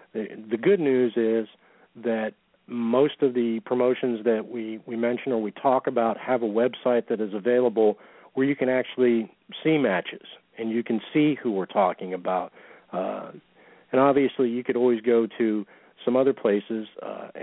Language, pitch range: English, 110-130 Hz